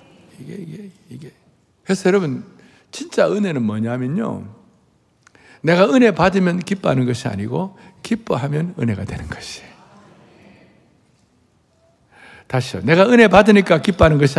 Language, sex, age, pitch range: Korean, male, 60-79, 120-190 Hz